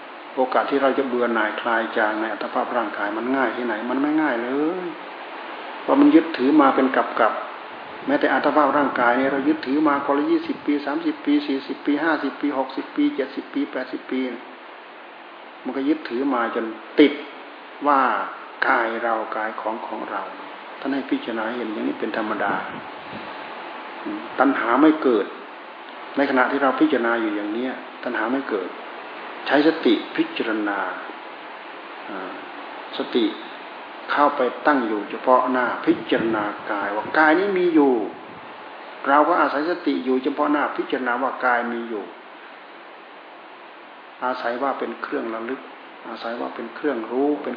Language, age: Thai, 60-79